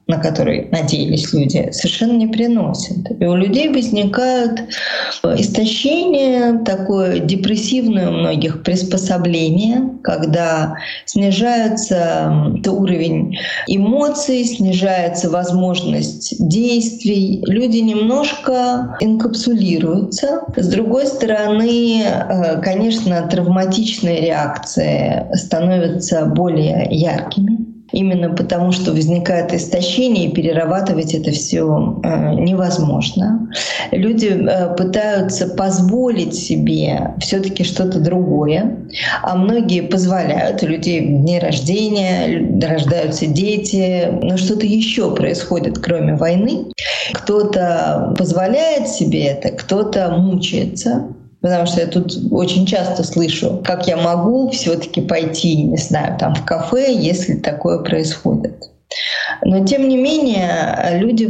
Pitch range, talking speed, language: 170-220 Hz, 95 wpm, Russian